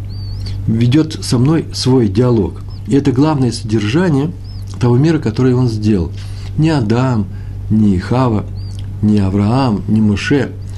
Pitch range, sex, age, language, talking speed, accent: 100-130 Hz, male, 60-79, Russian, 125 wpm, native